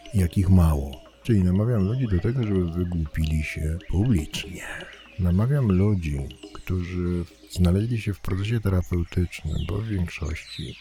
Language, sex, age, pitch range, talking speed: Polish, male, 50-69, 80-90 Hz, 120 wpm